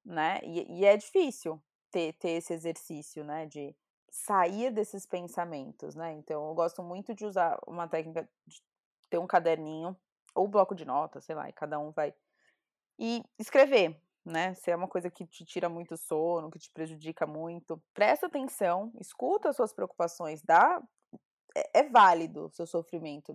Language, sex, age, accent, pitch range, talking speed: Portuguese, female, 20-39, Brazilian, 170-230 Hz, 170 wpm